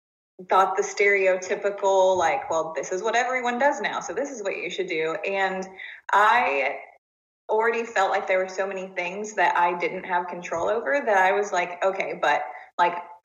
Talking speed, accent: 185 wpm, American